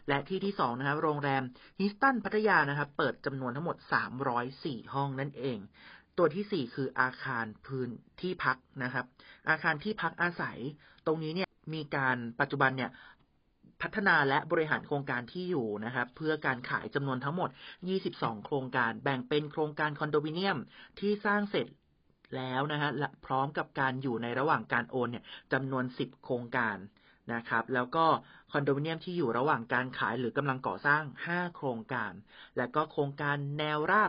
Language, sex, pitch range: Thai, male, 130-165 Hz